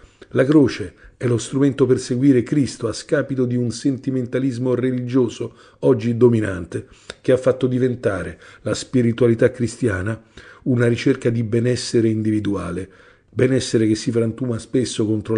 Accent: native